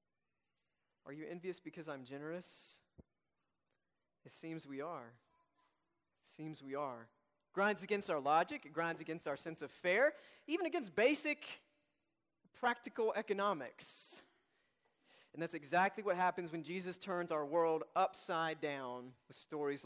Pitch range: 160-215 Hz